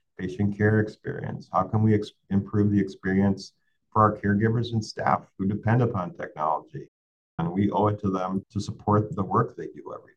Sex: male